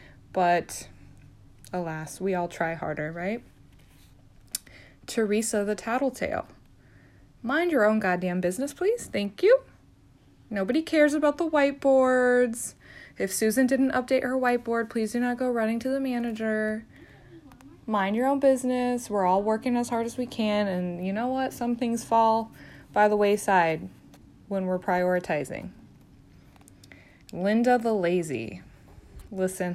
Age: 20-39